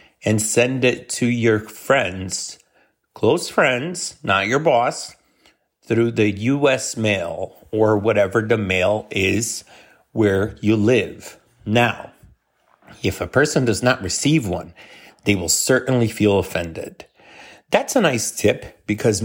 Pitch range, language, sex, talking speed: 100-120 Hz, English, male, 130 wpm